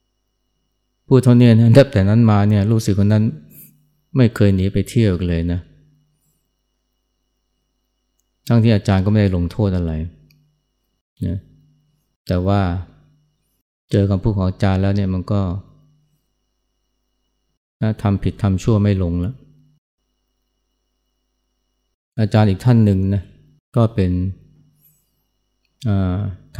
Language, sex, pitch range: Thai, male, 95-130 Hz